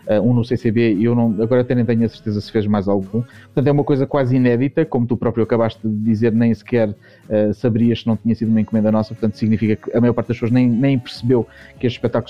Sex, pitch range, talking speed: male, 110-125 Hz, 265 wpm